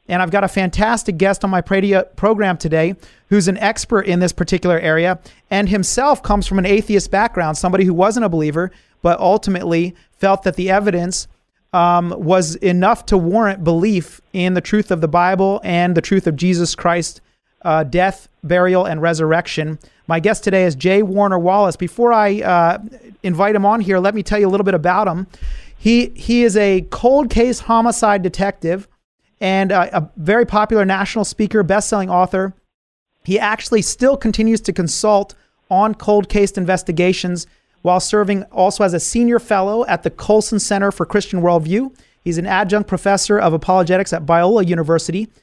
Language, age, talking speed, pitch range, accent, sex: English, 30-49, 175 wpm, 180-210 Hz, American, male